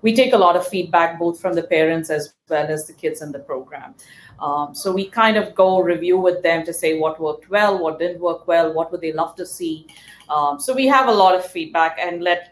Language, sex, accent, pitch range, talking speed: English, female, Indian, 165-220 Hz, 250 wpm